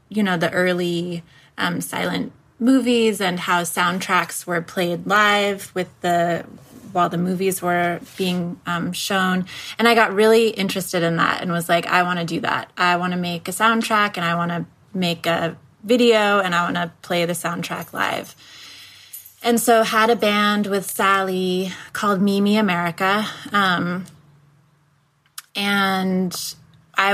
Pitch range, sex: 170-205 Hz, female